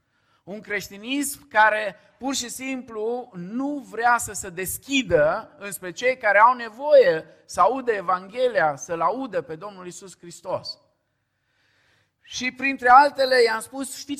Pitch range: 160-240 Hz